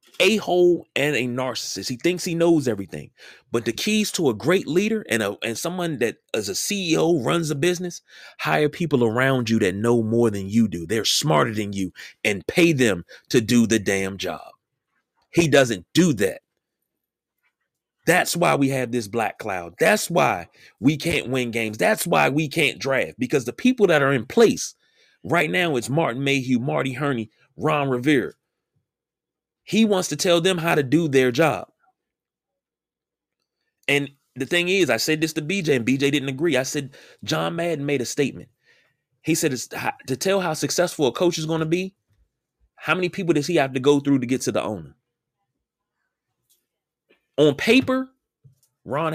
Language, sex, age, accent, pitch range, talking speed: English, male, 30-49, American, 120-170 Hz, 180 wpm